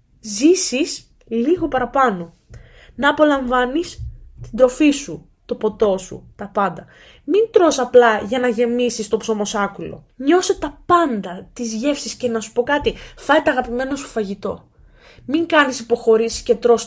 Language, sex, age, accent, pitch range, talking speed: Greek, female, 20-39, native, 225-300 Hz, 145 wpm